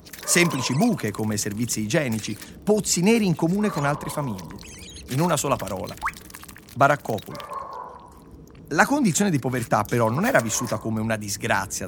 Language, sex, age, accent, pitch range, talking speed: Italian, male, 30-49, native, 110-165 Hz, 140 wpm